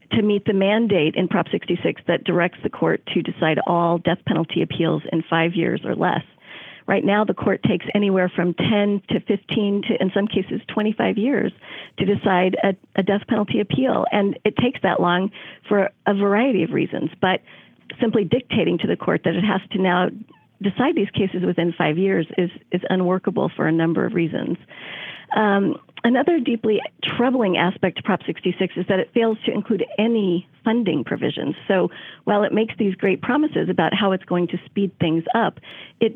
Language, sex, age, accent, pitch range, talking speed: English, female, 40-59, American, 180-220 Hz, 190 wpm